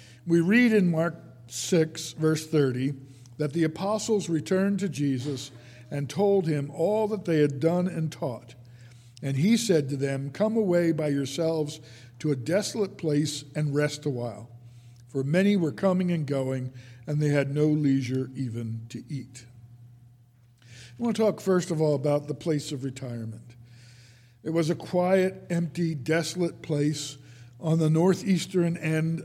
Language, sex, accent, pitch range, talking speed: English, male, American, 125-170 Hz, 160 wpm